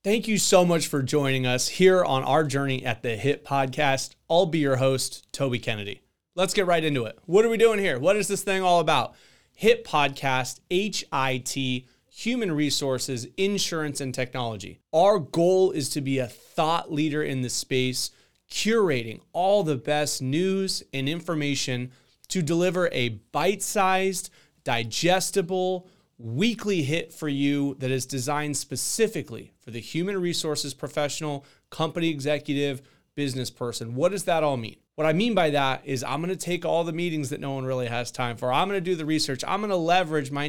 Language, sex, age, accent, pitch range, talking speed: English, male, 30-49, American, 130-180 Hz, 180 wpm